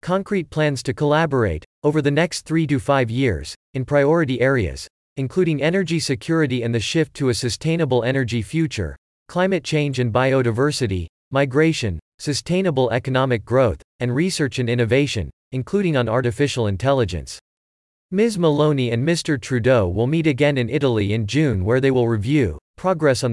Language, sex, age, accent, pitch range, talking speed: English, male, 40-59, American, 115-150 Hz, 150 wpm